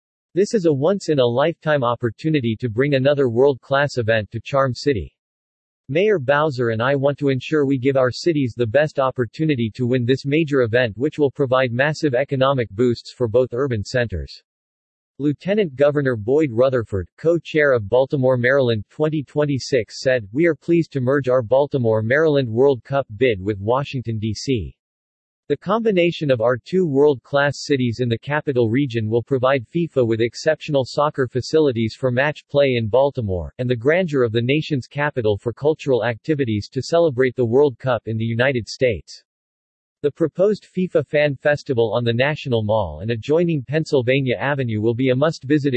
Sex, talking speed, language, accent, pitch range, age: male, 165 wpm, English, American, 115-145 Hz, 50-69